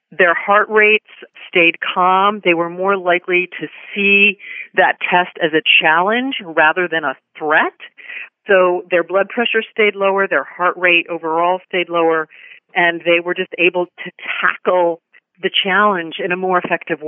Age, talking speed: 40-59, 160 wpm